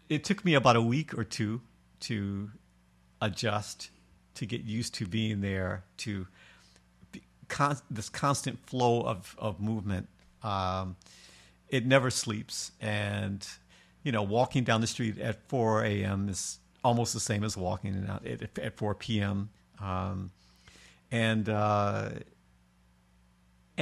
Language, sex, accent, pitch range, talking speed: English, male, American, 95-130 Hz, 130 wpm